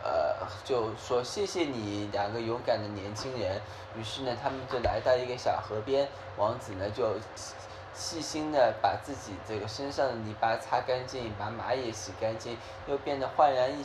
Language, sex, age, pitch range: Chinese, male, 10-29, 105-135 Hz